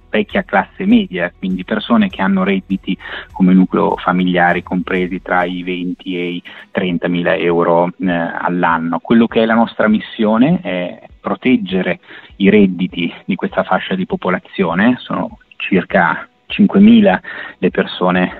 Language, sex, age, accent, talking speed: Italian, male, 30-49, native, 140 wpm